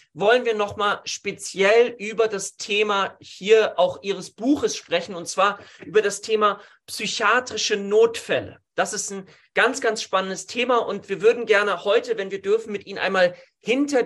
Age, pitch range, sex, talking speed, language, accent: 40-59, 185-235 Hz, male, 160 wpm, German, German